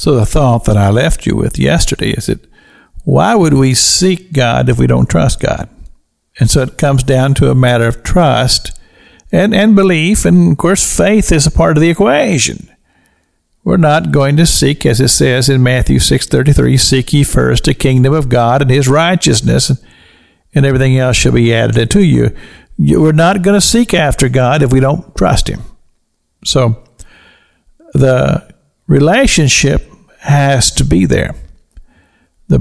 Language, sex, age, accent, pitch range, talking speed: English, male, 50-69, American, 115-170 Hz, 175 wpm